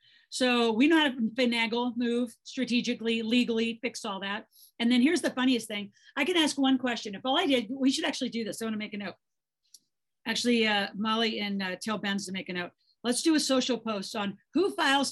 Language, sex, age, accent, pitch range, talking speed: English, female, 50-69, American, 215-260 Hz, 220 wpm